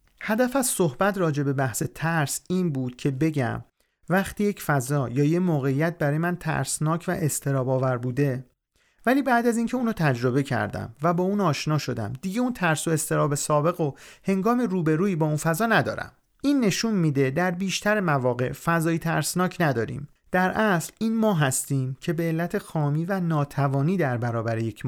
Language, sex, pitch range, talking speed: Persian, male, 140-185 Hz, 170 wpm